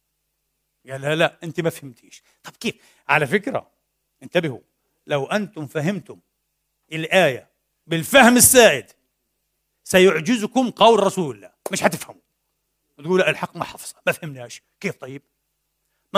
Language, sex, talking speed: Arabic, male, 120 wpm